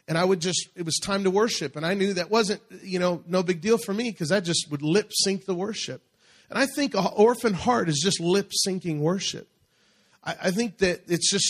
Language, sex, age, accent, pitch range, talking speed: English, male, 40-59, American, 130-175 Hz, 240 wpm